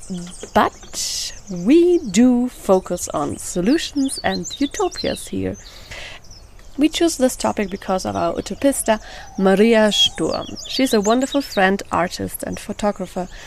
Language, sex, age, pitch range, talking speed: English, female, 30-49, 185-245 Hz, 115 wpm